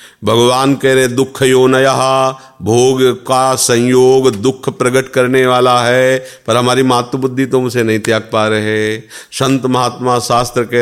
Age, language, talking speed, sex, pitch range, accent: 50-69, Hindi, 150 wpm, male, 95-120 Hz, native